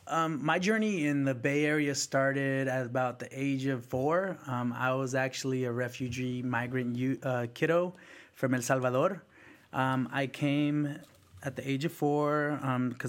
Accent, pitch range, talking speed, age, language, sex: American, 125-145 Hz, 160 wpm, 30-49, English, male